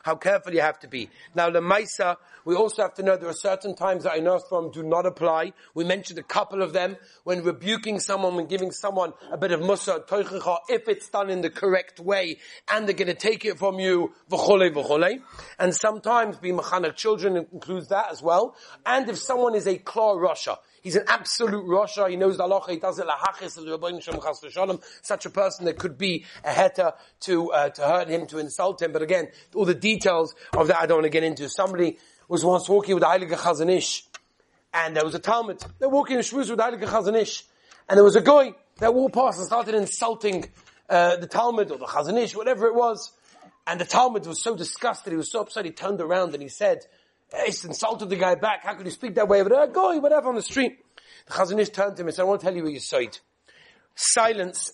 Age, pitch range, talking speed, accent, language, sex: 40-59, 175-210 Hz, 220 wpm, British, English, male